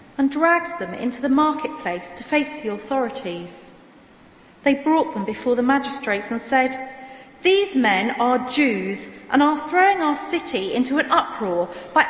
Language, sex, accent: English, female, British